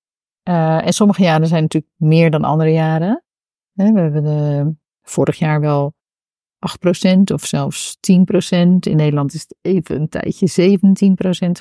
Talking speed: 140 wpm